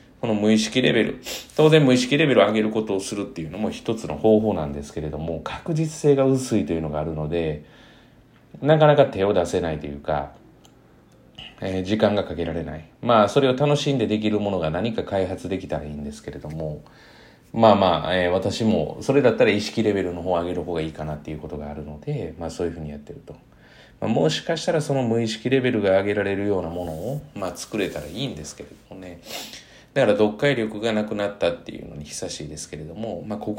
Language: Japanese